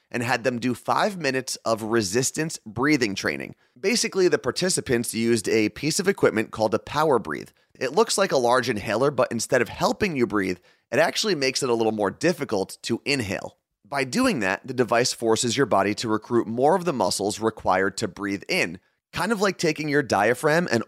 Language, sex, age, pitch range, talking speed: English, male, 30-49, 110-145 Hz, 200 wpm